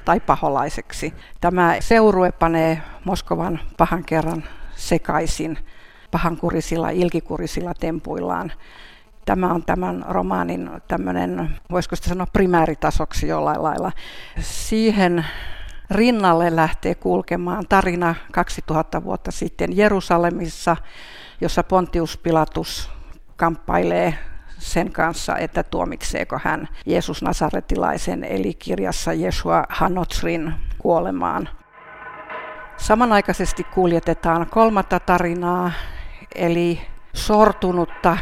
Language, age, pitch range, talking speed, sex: Finnish, 50-69, 160-180 Hz, 85 wpm, female